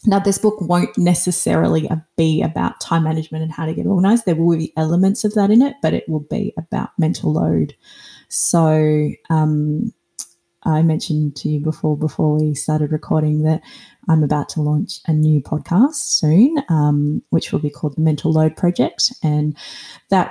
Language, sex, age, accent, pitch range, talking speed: English, female, 20-39, Australian, 155-185 Hz, 175 wpm